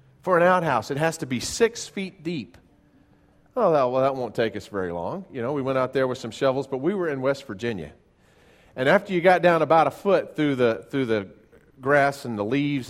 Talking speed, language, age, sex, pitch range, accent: 235 wpm, English, 40-59, male, 110-145 Hz, American